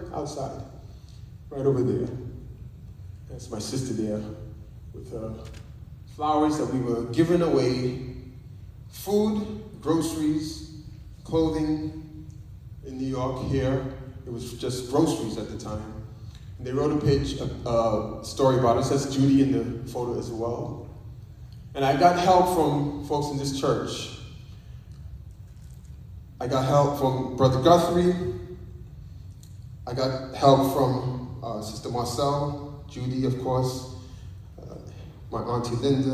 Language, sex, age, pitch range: English, male, 30-49, 115-140 Hz